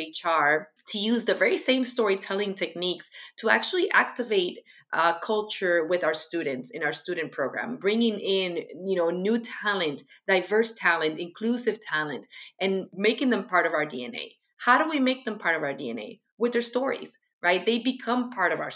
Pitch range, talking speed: 165-235 Hz, 175 wpm